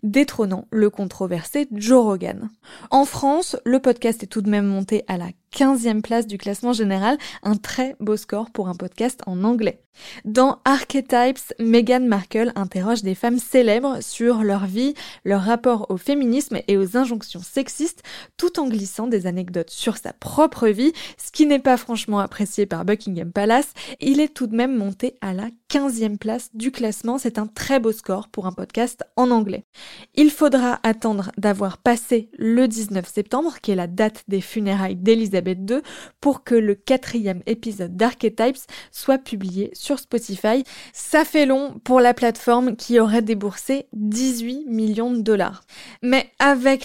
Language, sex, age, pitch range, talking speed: French, female, 20-39, 210-255 Hz, 165 wpm